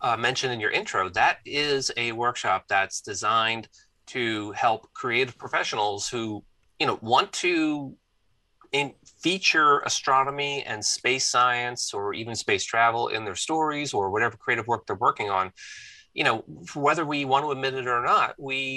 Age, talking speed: 30-49, 165 wpm